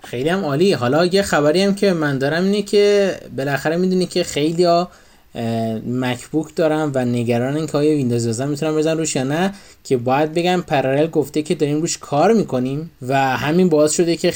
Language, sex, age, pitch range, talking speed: Persian, male, 20-39, 125-160 Hz, 190 wpm